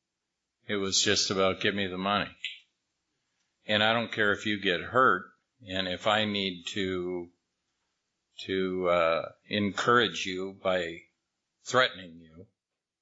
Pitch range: 95-115 Hz